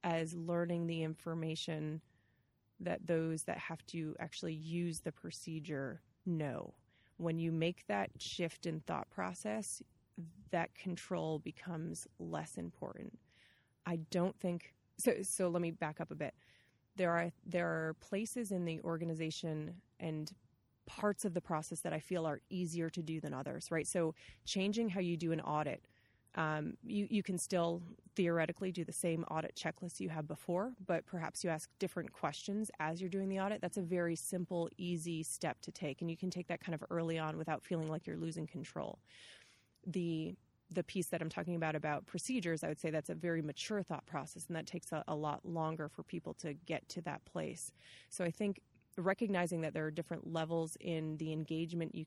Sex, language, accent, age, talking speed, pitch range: female, English, American, 30-49, 185 wpm, 155-180 Hz